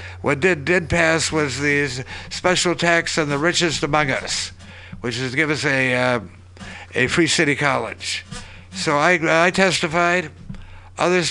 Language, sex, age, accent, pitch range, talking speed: English, male, 60-79, American, 100-160 Hz, 155 wpm